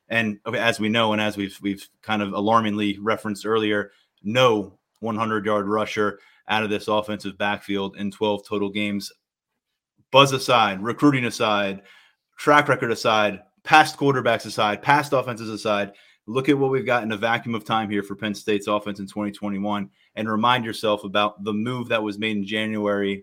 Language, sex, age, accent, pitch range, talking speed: English, male, 30-49, American, 105-120 Hz, 170 wpm